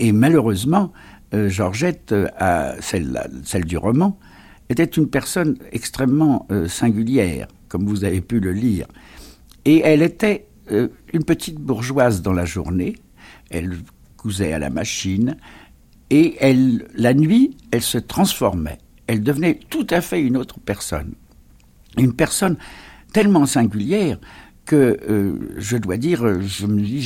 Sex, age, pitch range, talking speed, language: male, 60-79, 100-150 Hz, 125 wpm, French